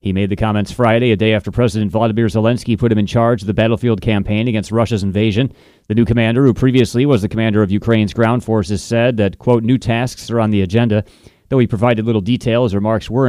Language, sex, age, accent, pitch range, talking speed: English, male, 30-49, American, 105-120 Hz, 230 wpm